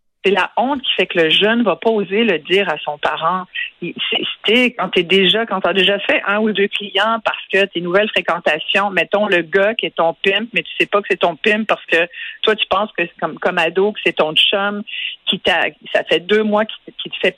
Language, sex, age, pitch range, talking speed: French, female, 50-69, 180-220 Hz, 260 wpm